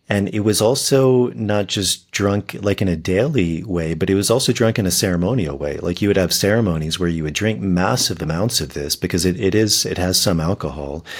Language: English